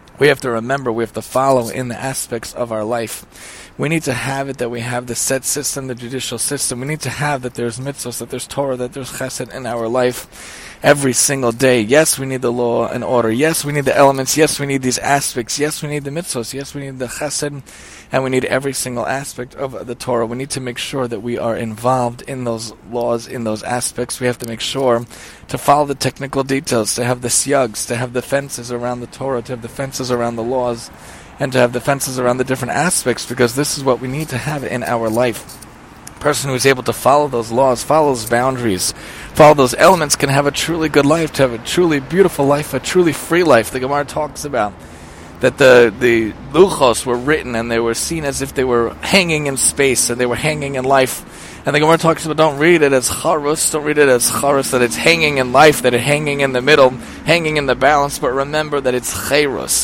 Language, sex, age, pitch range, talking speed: English, male, 20-39, 120-145 Hz, 240 wpm